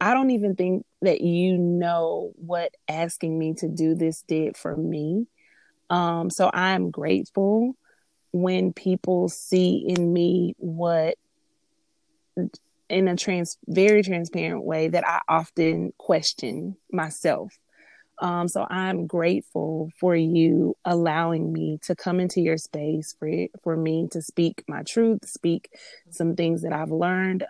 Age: 30-49